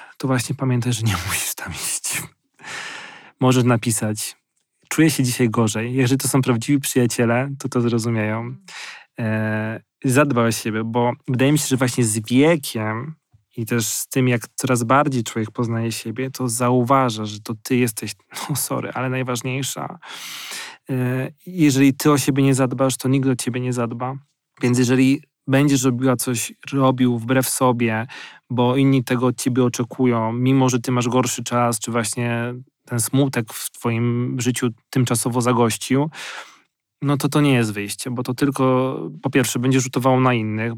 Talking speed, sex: 160 wpm, male